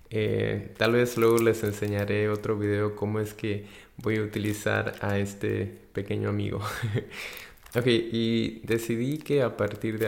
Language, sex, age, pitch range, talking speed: Spanish, male, 20-39, 105-115 Hz, 155 wpm